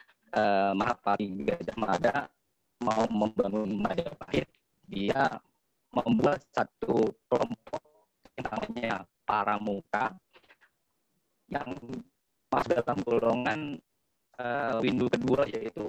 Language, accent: Indonesian, native